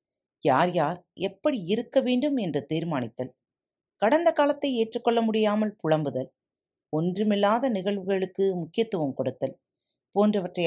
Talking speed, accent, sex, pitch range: 95 wpm, native, female, 145-215 Hz